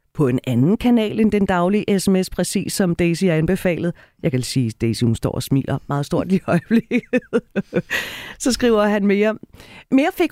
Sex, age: female, 40-59